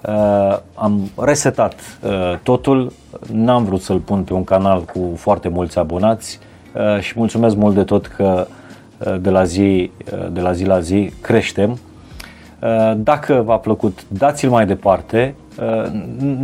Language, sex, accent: Romanian, male, native